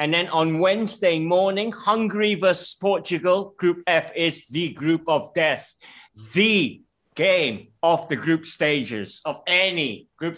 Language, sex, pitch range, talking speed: English, male, 150-215 Hz, 140 wpm